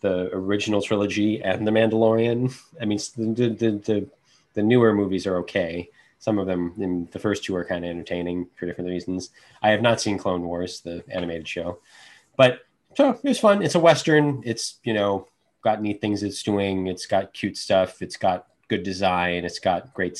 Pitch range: 95-130 Hz